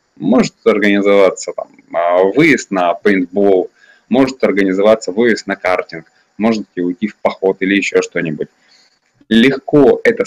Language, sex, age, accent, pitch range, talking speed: Russian, male, 20-39, native, 95-135 Hz, 125 wpm